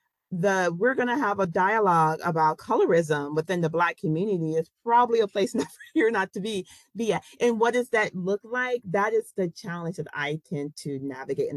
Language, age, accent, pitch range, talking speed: English, 40-59, American, 145-180 Hz, 200 wpm